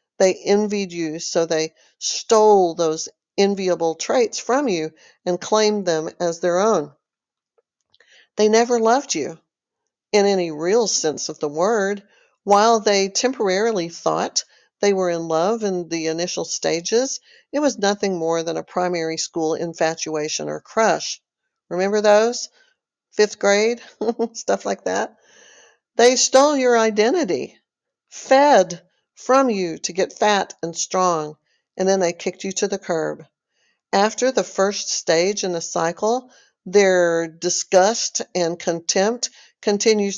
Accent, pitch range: American, 170-220 Hz